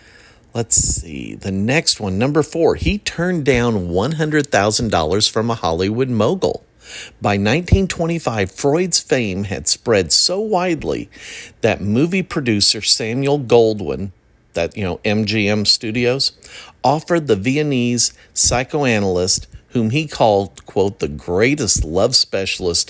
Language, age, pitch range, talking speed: English, 50-69, 100-140 Hz, 120 wpm